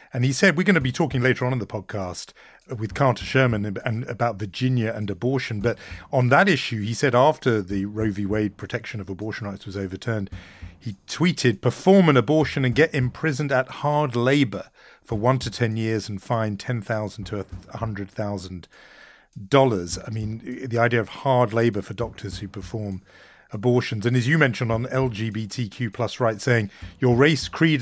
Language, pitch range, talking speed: English, 110-140 Hz, 180 wpm